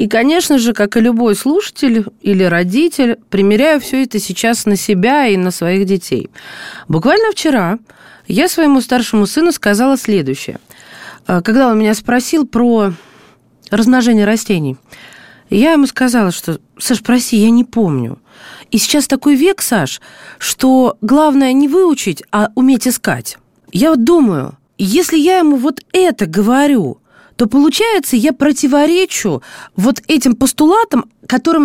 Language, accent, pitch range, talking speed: Russian, native, 220-310 Hz, 135 wpm